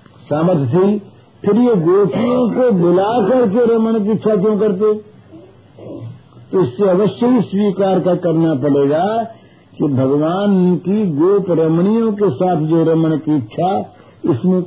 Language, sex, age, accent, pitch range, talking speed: Hindi, male, 60-79, native, 150-205 Hz, 130 wpm